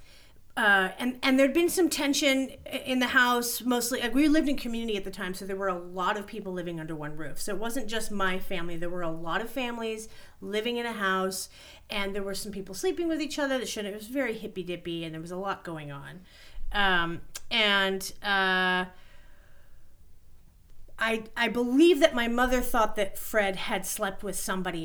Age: 40-59